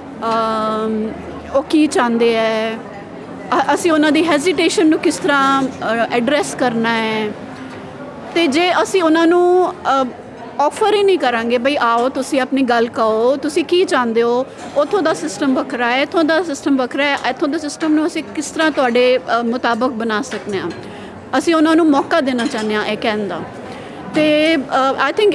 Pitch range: 235-305 Hz